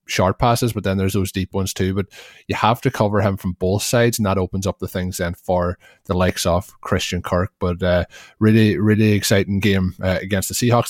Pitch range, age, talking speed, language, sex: 95-105 Hz, 20-39, 225 wpm, English, male